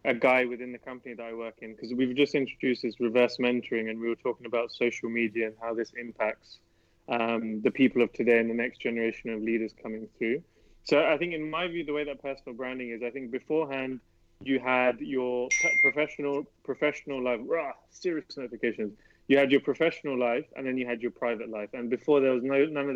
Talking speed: 215 wpm